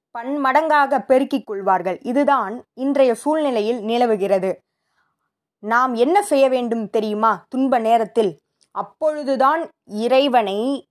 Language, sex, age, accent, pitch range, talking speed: Tamil, female, 20-39, native, 215-285 Hz, 95 wpm